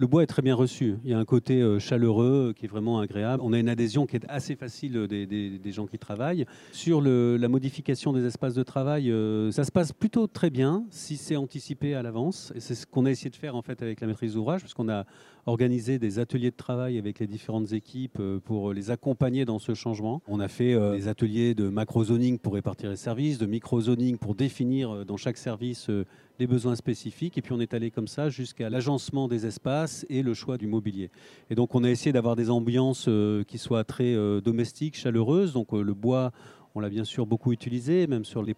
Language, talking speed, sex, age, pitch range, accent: French, 215 wpm, male, 40-59, 110-135 Hz, French